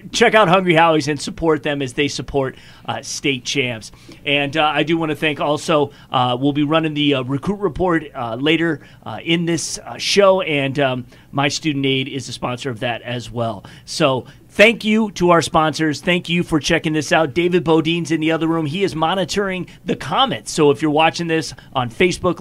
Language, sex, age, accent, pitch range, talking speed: English, male, 30-49, American, 150-195 Hz, 210 wpm